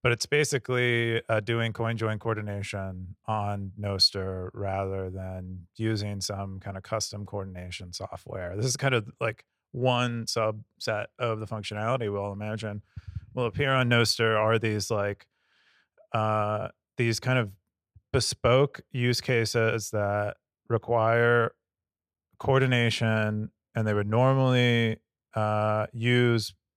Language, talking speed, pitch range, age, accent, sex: English, 120 wpm, 100-120 Hz, 30-49, American, male